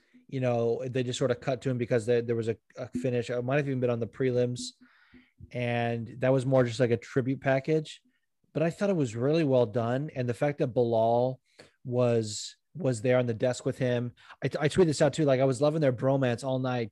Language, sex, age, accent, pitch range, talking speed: English, male, 20-39, American, 120-135 Hz, 240 wpm